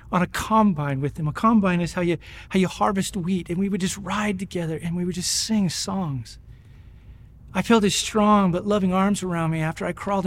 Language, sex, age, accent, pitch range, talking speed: English, male, 40-59, American, 115-195 Hz, 220 wpm